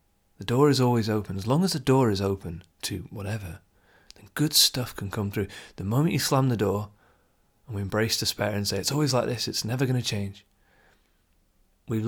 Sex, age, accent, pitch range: male, 30-49, British, 95-125 Hz